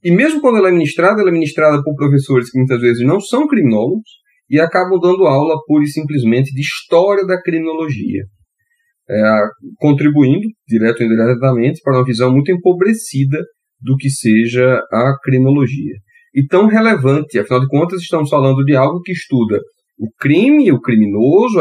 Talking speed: 160 wpm